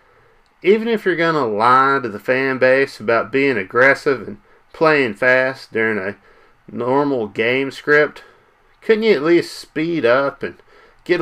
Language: English